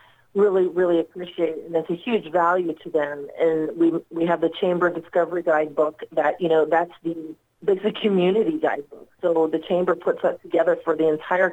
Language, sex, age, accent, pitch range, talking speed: English, female, 40-59, American, 160-180 Hz, 195 wpm